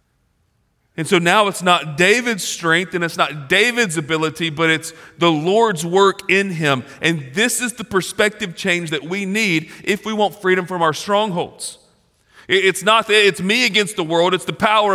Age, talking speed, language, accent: 40-59, 185 wpm, English, American